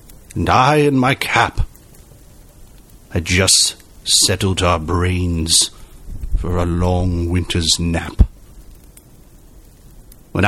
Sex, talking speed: male, 90 wpm